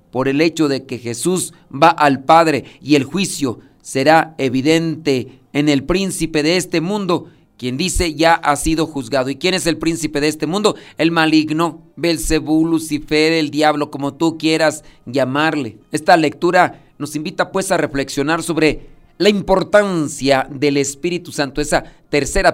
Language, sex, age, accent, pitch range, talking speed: Spanish, male, 40-59, Mexican, 140-170 Hz, 155 wpm